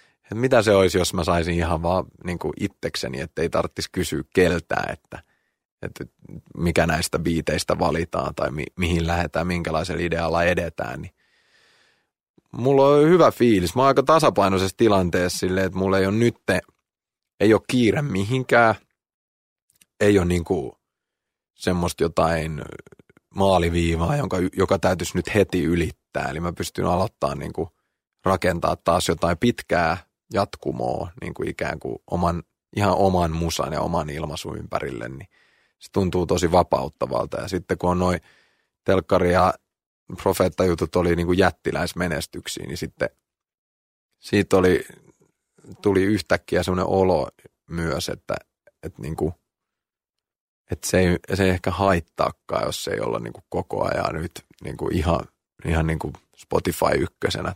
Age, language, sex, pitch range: 30-49, Finnish, male, 85-95 Hz